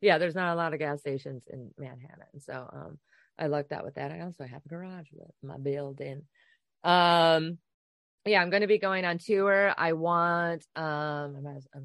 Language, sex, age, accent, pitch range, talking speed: English, female, 20-39, American, 135-175 Hz, 190 wpm